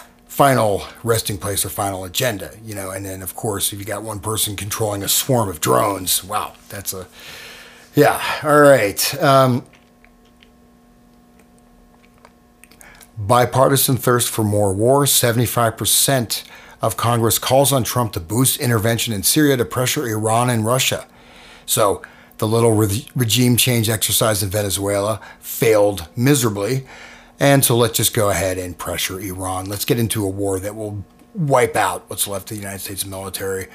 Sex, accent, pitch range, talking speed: male, American, 95-125 Hz, 155 wpm